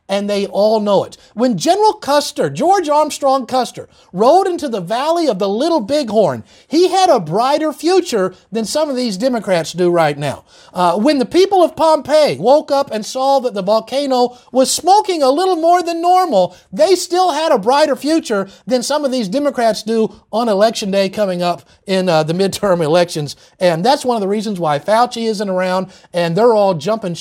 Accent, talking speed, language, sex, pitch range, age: American, 195 wpm, English, male, 185-280 Hz, 50-69